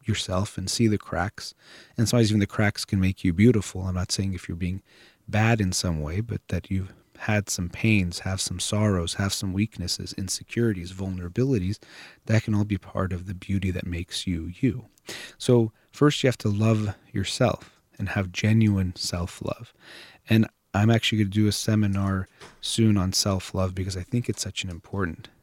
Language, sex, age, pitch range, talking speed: English, male, 30-49, 95-110 Hz, 185 wpm